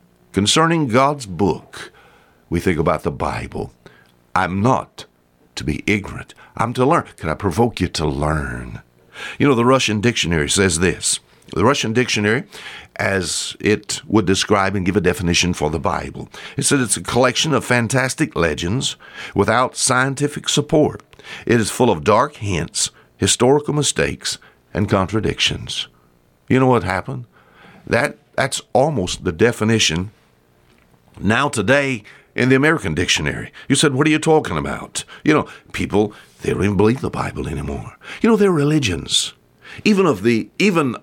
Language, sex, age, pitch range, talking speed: English, male, 60-79, 90-140 Hz, 150 wpm